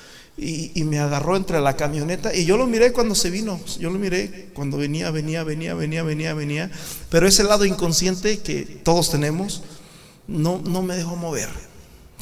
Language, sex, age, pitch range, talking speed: Spanish, male, 40-59, 155-210 Hz, 180 wpm